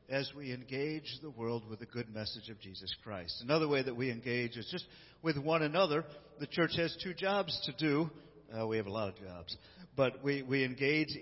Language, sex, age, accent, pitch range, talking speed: English, male, 50-69, American, 115-150 Hz, 215 wpm